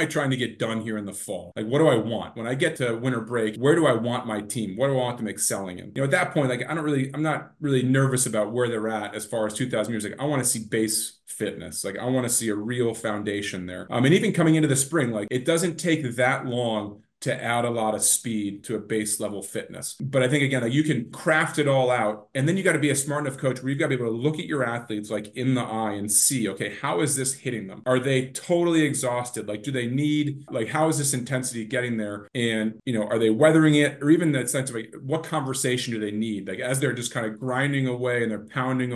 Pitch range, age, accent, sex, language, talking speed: 110-145 Hz, 30-49, American, male, English, 280 wpm